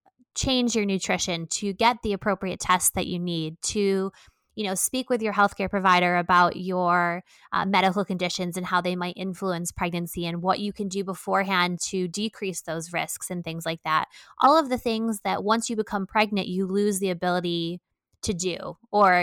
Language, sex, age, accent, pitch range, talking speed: English, female, 20-39, American, 180-205 Hz, 185 wpm